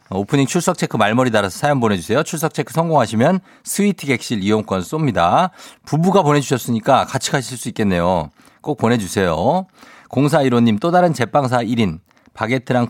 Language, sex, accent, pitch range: Korean, male, native, 105-135 Hz